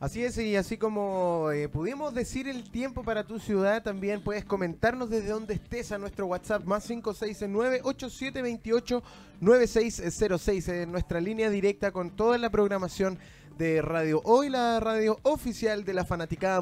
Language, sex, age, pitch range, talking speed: Spanish, male, 20-39, 185-235 Hz, 150 wpm